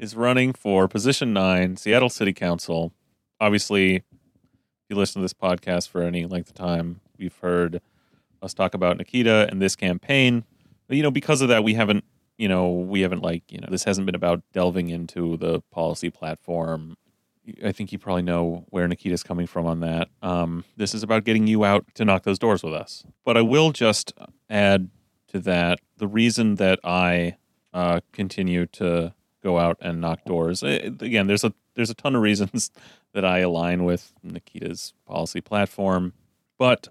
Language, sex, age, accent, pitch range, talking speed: English, male, 30-49, American, 85-110 Hz, 185 wpm